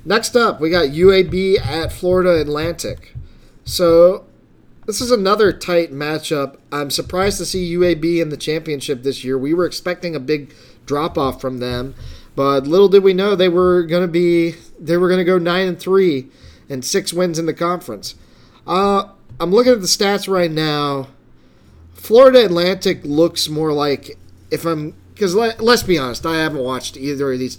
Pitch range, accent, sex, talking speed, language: 130-175 Hz, American, male, 180 wpm, English